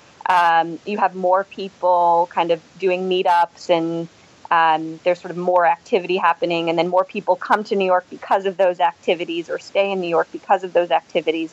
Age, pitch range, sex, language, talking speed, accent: 20-39, 165-195 Hz, female, English, 200 wpm, American